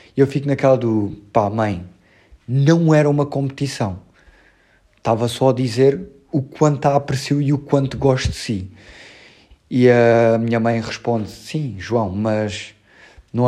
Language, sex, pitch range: Portuguese, male, 110-135 Hz